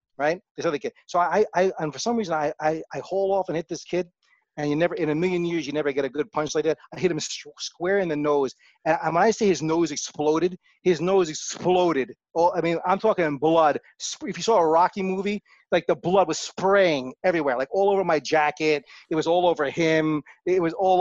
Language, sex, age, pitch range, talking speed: English, male, 30-49, 155-210 Hz, 235 wpm